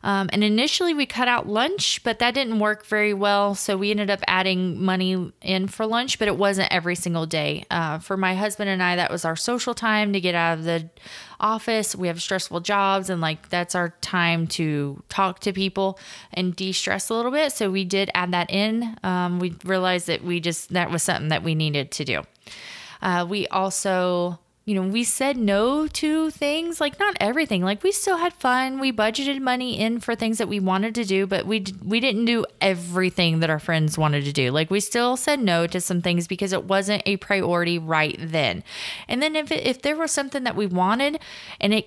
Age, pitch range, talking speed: 20-39, 175-225 Hz, 220 wpm